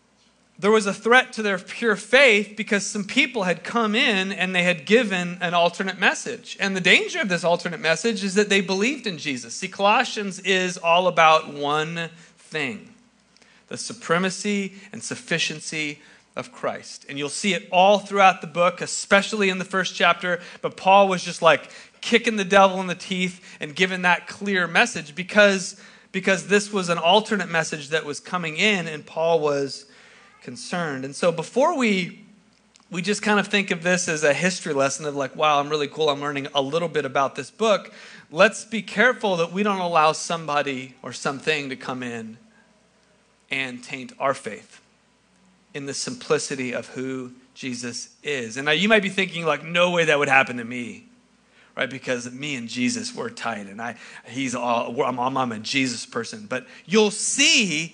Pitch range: 155-215 Hz